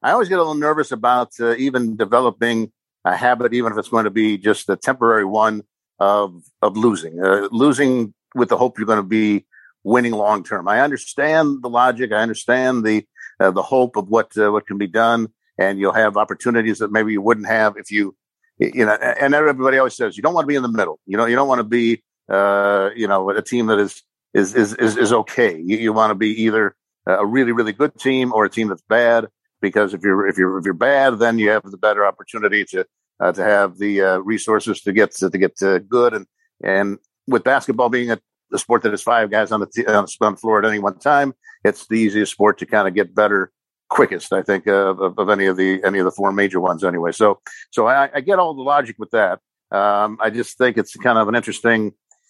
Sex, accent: male, American